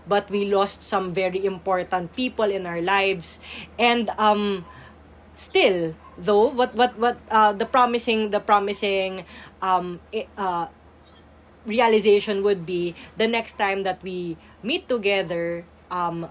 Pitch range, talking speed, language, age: 175-215 Hz, 130 wpm, English, 20-39